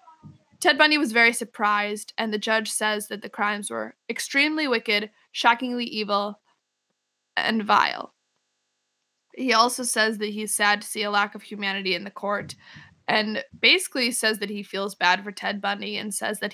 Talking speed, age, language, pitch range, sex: 170 wpm, 20-39, English, 205-240 Hz, female